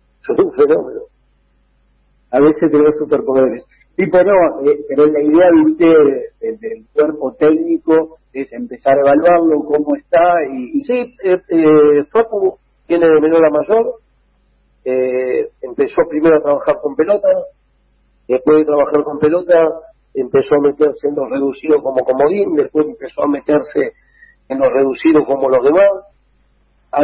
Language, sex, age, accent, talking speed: Spanish, male, 50-69, Argentinian, 150 wpm